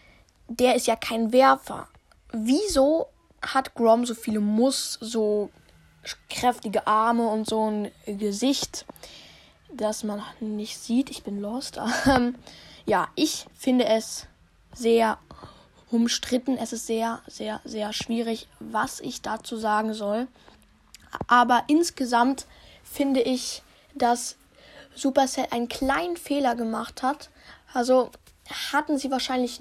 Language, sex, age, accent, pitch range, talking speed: German, female, 10-29, German, 225-265 Hz, 120 wpm